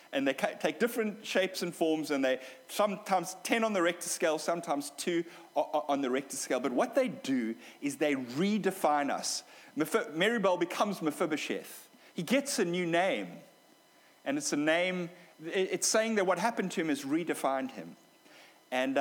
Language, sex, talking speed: English, male, 165 wpm